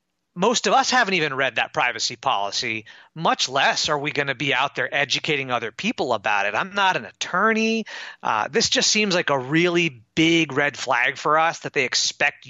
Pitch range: 140-185 Hz